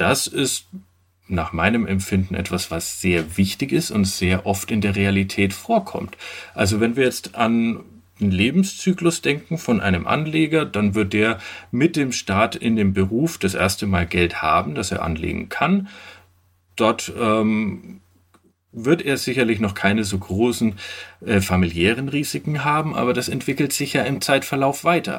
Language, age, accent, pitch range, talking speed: German, 40-59, German, 95-130 Hz, 160 wpm